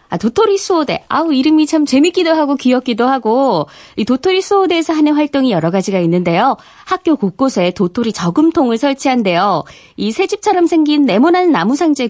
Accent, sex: native, female